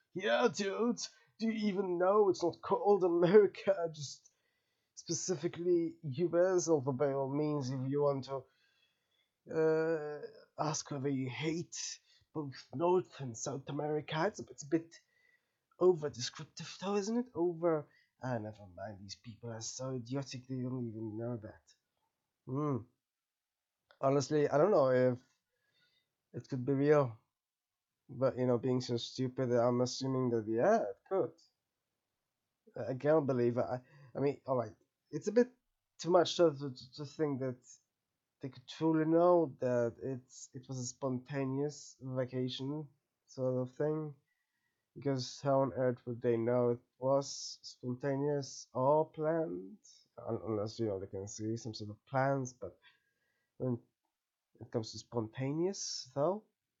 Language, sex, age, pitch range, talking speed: English, male, 20-39, 125-160 Hz, 145 wpm